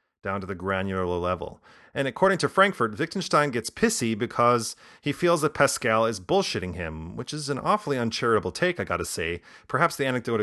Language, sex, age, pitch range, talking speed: English, male, 30-49, 100-145 Hz, 185 wpm